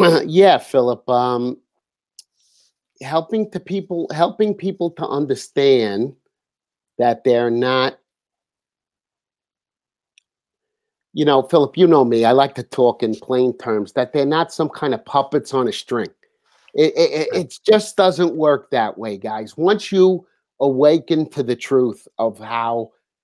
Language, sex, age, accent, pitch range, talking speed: English, male, 50-69, American, 120-160 Hz, 140 wpm